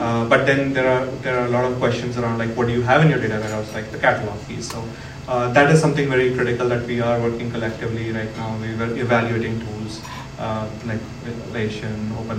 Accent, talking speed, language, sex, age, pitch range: Indian, 230 wpm, English, male, 30-49, 115-130 Hz